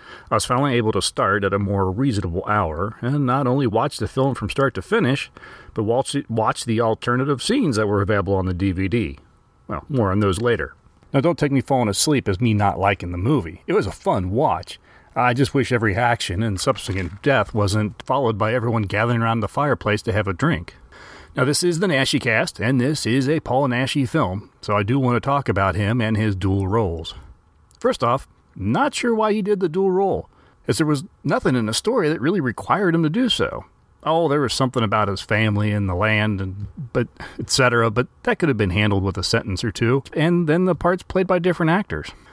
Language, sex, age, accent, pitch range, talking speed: English, male, 40-59, American, 100-140 Hz, 220 wpm